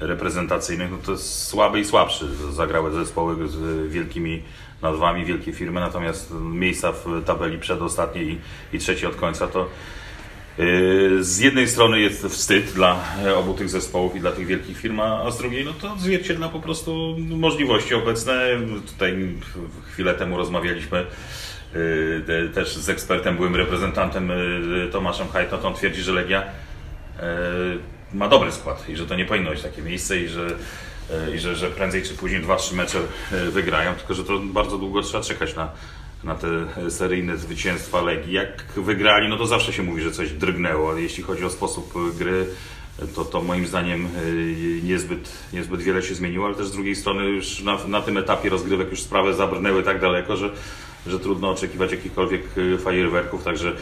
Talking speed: 165 wpm